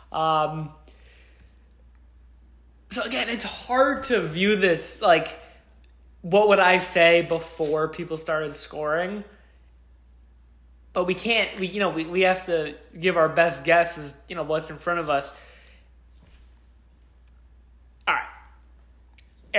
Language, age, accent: English, 20-39, American